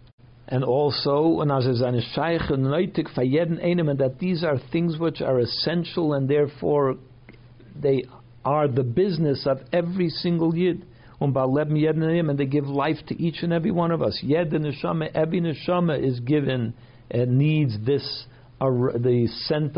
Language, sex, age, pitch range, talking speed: English, male, 60-79, 120-155 Hz, 130 wpm